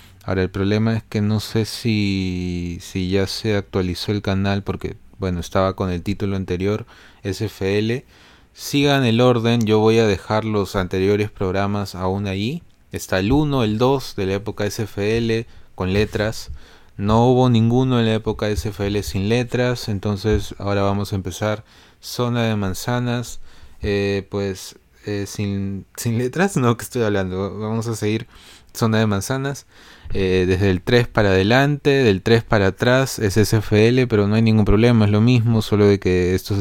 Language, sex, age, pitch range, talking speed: Spanish, male, 20-39, 95-115 Hz, 165 wpm